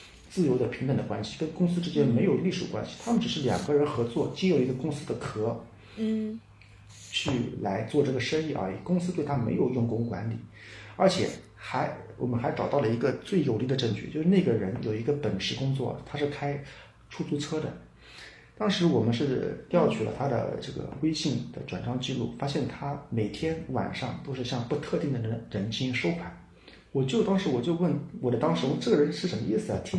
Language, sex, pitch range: Chinese, male, 110-150 Hz